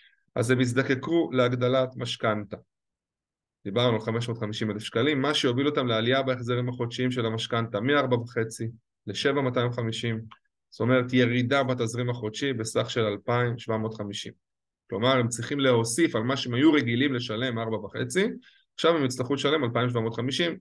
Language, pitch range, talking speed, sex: Hebrew, 110-130 Hz, 125 wpm, male